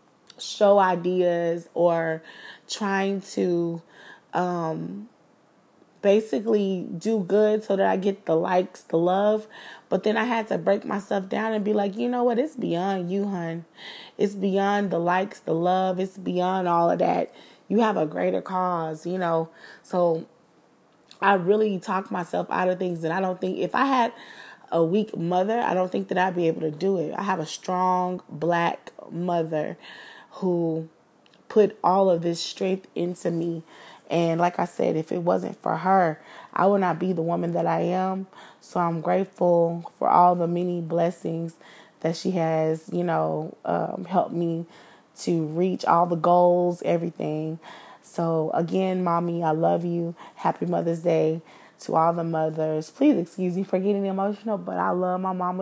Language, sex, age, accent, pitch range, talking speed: English, female, 20-39, American, 170-200 Hz, 170 wpm